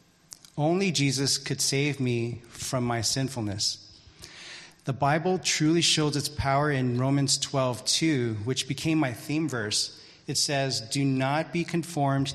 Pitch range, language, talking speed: 120-145 Hz, English, 135 wpm